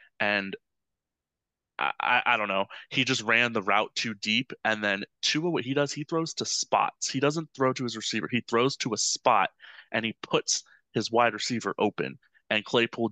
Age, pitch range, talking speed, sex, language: 20-39, 100-120 Hz, 195 wpm, male, English